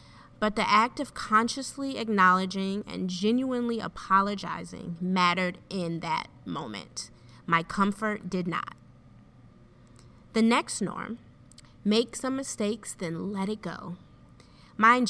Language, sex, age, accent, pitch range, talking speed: English, female, 30-49, American, 165-215 Hz, 110 wpm